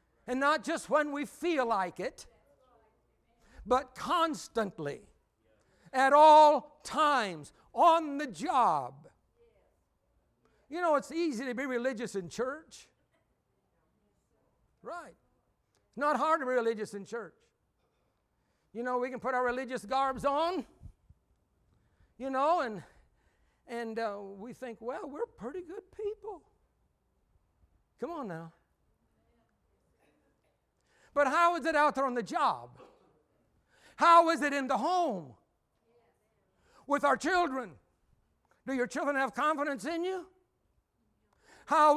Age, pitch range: 60-79, 240-320 Hz